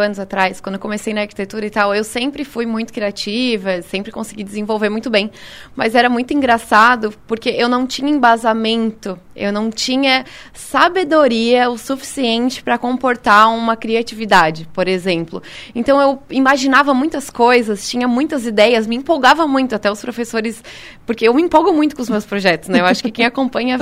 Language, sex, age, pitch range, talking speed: Portuguese, female, 20-39, 220-270 Hz, 175 wpm